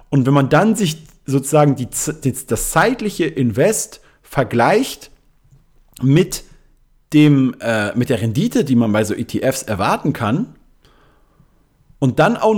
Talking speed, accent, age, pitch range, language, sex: 130 wpm, German, 40-59, 125-155 Hz, German, male